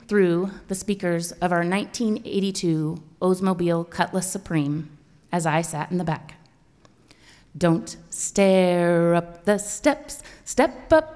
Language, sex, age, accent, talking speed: English, female, 30-49, American, 120 wpm